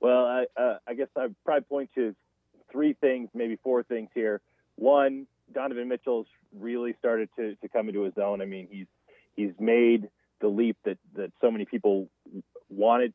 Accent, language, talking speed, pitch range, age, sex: American, English, 180 wpm, 100-120 Hz, 30-49, male